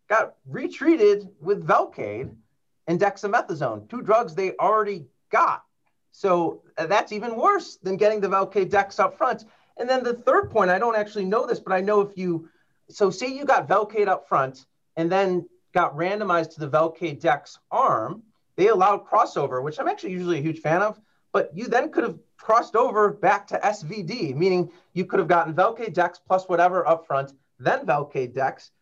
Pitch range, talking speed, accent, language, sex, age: 150-200 Hz, 175 wpm, American, English, male, 30-49